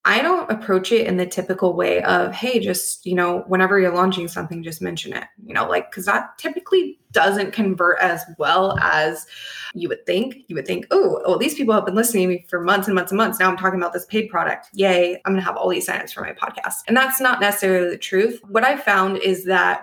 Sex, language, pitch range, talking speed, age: female, English, 180-230 Hz, 245 wpm, 20-39